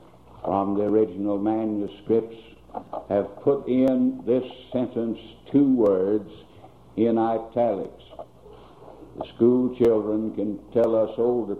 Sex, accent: male, American